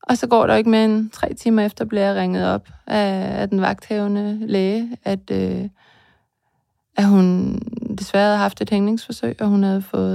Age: 20-39